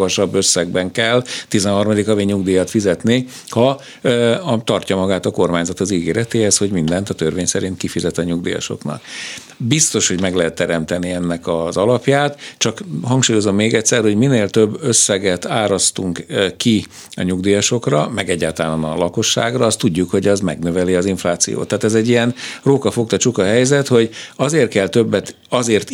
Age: 60-79